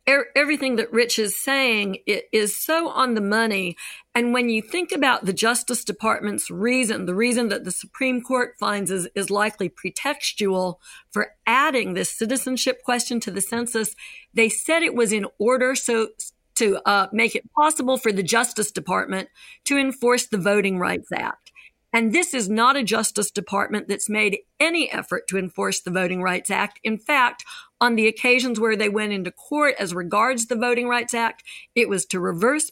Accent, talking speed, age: American, 180 wpm, 50-69